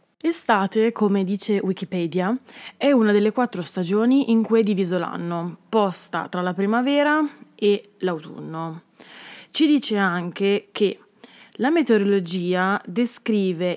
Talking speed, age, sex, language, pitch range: 120 wpm, 20-39, female, Italian, 180-225 Hz